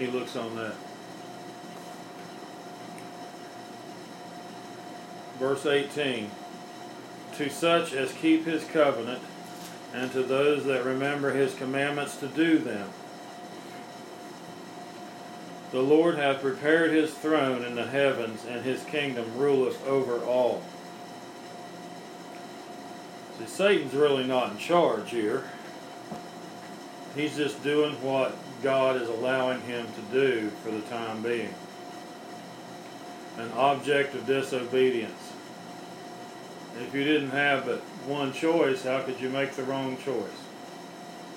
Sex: male